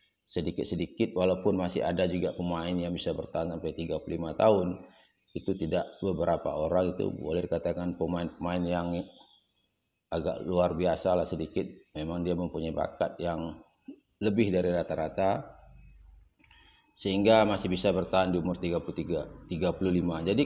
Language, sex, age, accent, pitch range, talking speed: Indonesian, male, 30-49, native, 90-115 Hz, 125 wpm